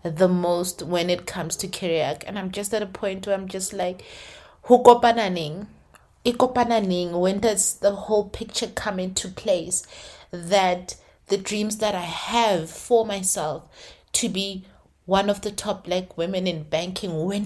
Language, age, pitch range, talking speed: English, 30-49, 185-225 Hz, 150 wpm